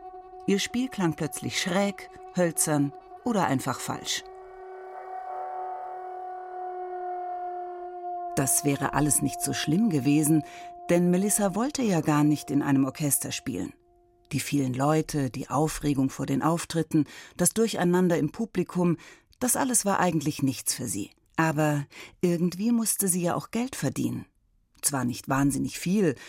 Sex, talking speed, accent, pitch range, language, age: female, 130 wpm, German, 150-235 Hz, German, 40-59